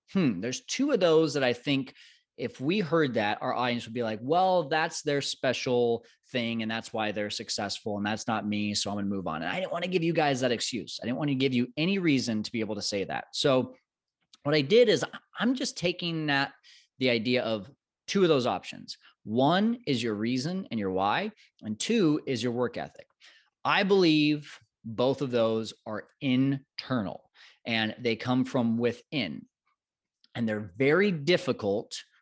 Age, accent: 30-49, American